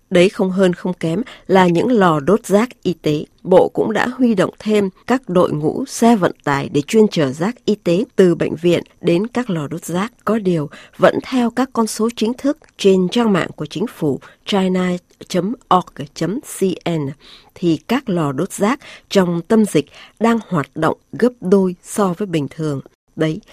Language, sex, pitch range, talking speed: Vietnamese, female, 165-220 Hz, 185 wpm